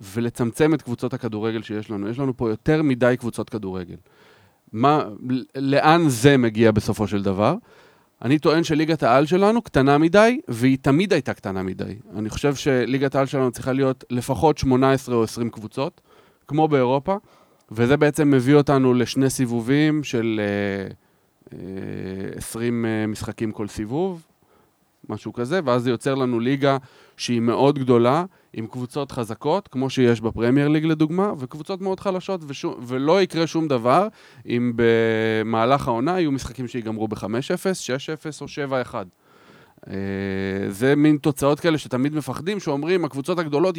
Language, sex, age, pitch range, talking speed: Hebrew, male, 30-49, 115-155 Hz, 140 wpm